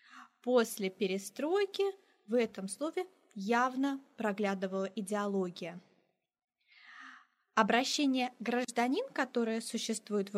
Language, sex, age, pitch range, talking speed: Turkish, female, 20-39, 195-250 Hz, 75 wpm